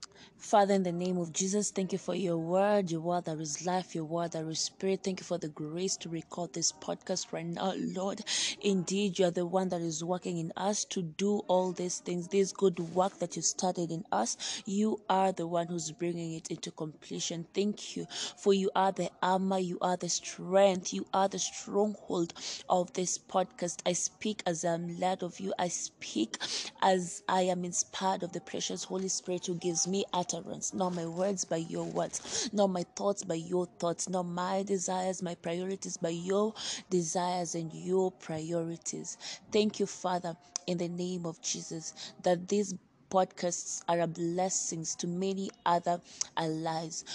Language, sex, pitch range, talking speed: English, female, 170-190 Hz, 185 wpm